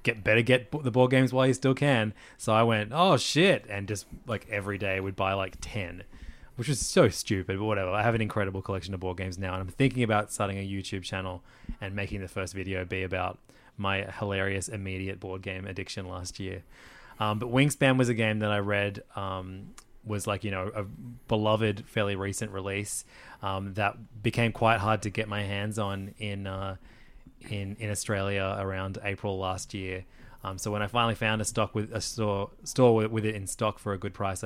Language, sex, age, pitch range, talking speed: English, male, 20-39, 95-115 Hz, 210 wpm